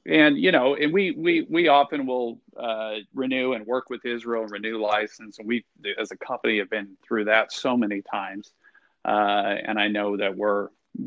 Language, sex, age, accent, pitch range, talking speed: English, male, 40-59, American, 110-160 Hz, 190 wpm